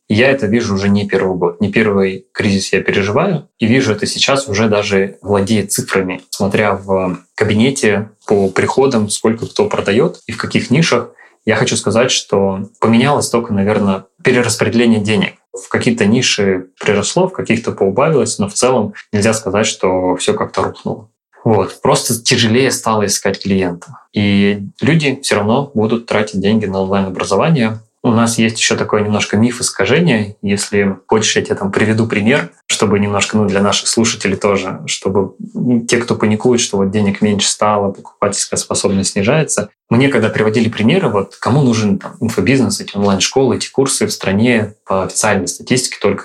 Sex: male